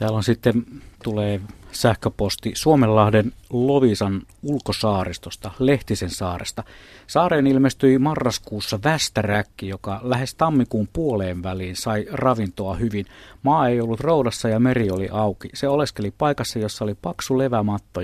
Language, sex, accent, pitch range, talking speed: Finnish, male, native, 100-125 Hz, 125 wpm